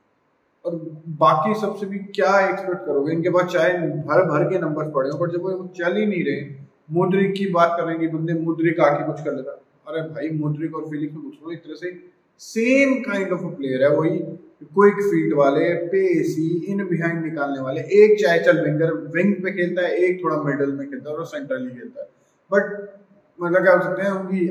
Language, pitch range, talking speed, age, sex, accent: Hindi, 150-195 Hz, 195 wpm, 20-39, male, native